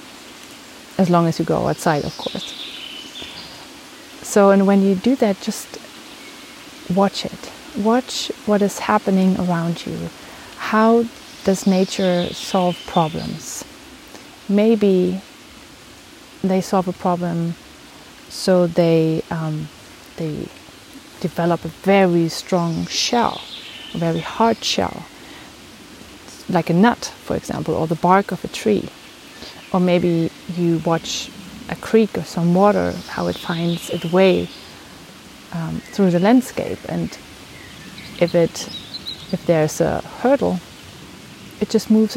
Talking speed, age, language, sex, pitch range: 120 wpm, 30-49, English, female, 170-230 Hz